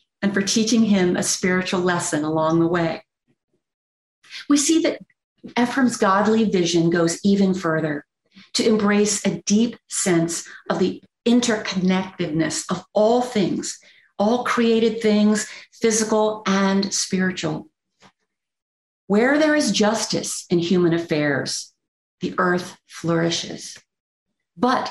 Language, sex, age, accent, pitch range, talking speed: English, female, 40-59, American, 170-220 Hz, 115 wpm